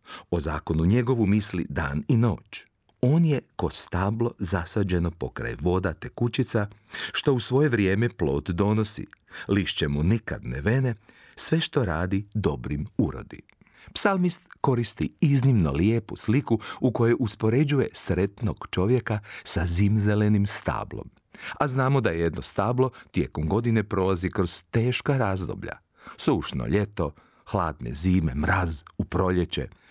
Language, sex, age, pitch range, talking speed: Croatian, male, 40-59, 90-125 Hz, 125 wpm